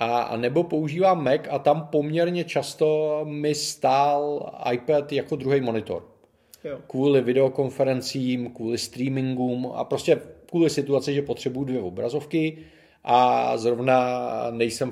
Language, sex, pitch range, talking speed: Czech, male, 120-145 Hz, 115 wpm